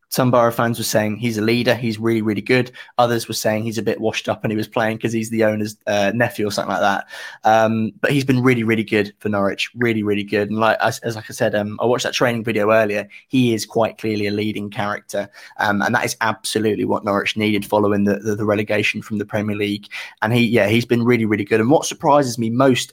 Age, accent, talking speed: 20-39, British, 265 wpm